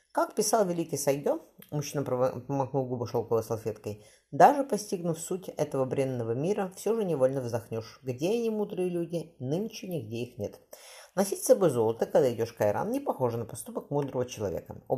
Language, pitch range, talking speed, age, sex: Russian, 120-175 Hz, 165 wpm, 20-39, female